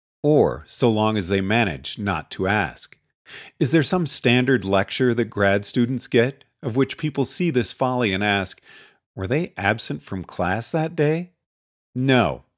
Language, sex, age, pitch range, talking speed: English, male, 40-59, 105-140 Hz, 160 wpm